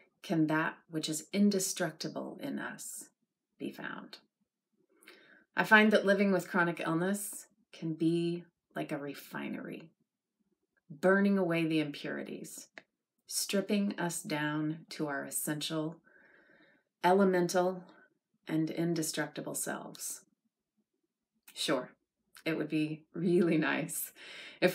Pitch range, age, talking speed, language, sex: 155-195 Hz, 30-49, 100 wpm, English, female